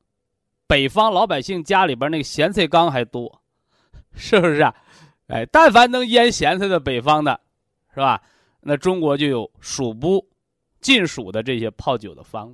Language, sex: Chinese, male